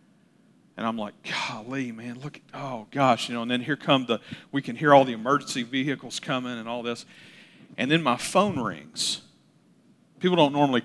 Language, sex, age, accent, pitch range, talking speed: English, male, 50-69, American, 115-145 Hz, 190 wpm